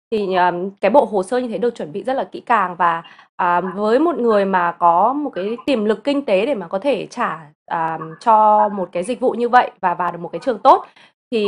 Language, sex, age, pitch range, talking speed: Vietnamese, female, 20-39, 180-270 Hz, 240 wpm